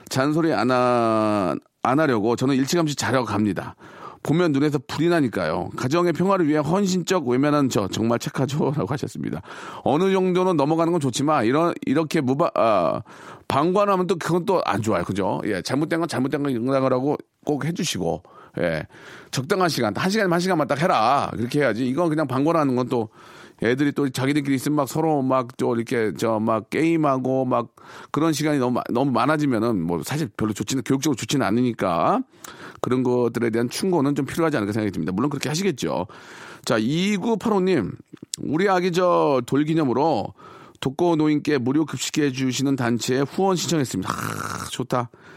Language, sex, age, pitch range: Korean, male, 40-59, 120-165 Hz